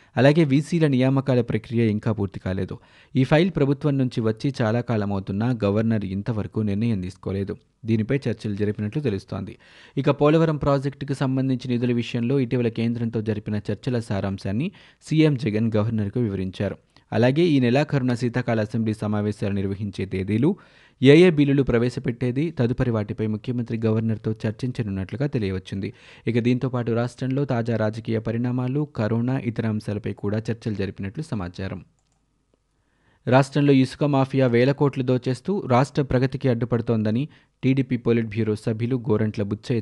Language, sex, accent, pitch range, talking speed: Telugu, male, native, 105-135 Hz, 125 wpm